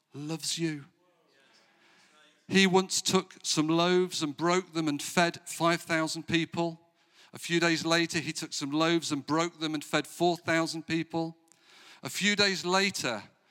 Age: 50-69